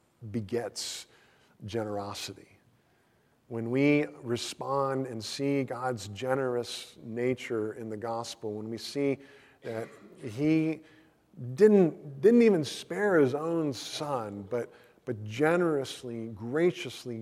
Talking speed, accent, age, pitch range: 100 wpm, American, 50-69, 110-135 Hz